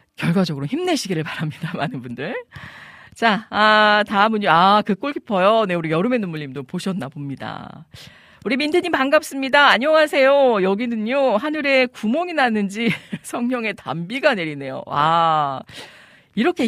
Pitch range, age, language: 160-245 Hz, 40-59, Korean